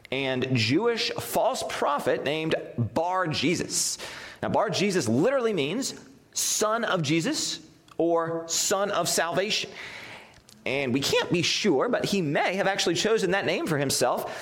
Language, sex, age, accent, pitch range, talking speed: English, male, 30-49, American, 120-170 Hz, 135 wpm